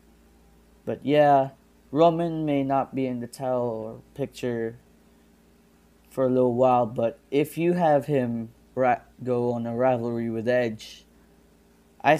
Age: 20-39